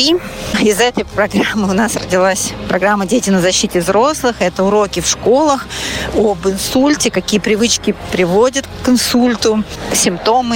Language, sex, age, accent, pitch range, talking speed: Russian, female, 30-49, native, 195-235 Hz, 130 wpm